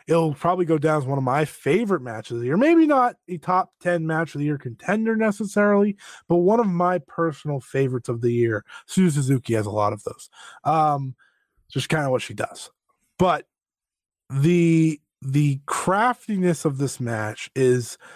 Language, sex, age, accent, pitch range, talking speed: English, male, 20-39, American, 135-185 Hz, 180 wpm